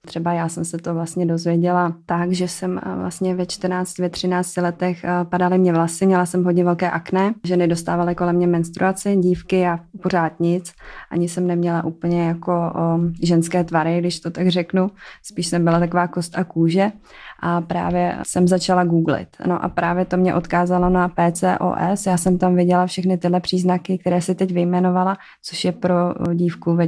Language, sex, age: Czech, female, 20-39